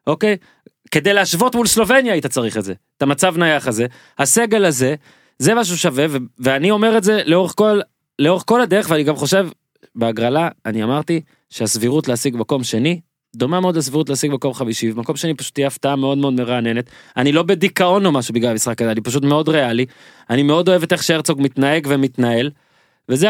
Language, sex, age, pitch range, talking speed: Hebrew, male, 20-39, 120-160 Hz, 190 wpm